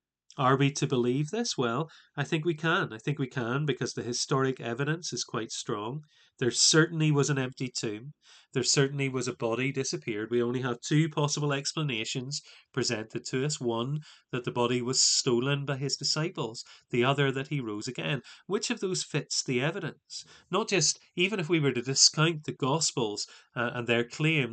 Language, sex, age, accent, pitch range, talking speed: English, male, 30-49, British, 120-155 Hz, 190 wpm